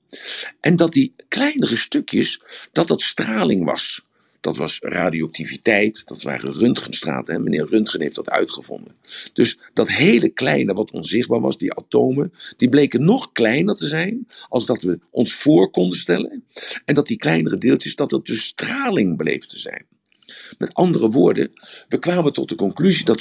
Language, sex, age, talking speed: Dutch, male, 50-69, 165 wpm